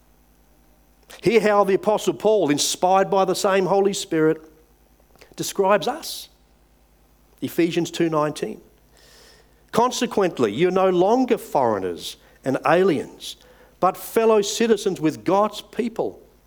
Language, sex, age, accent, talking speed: English, male, 50-69, Australian, 105 wpm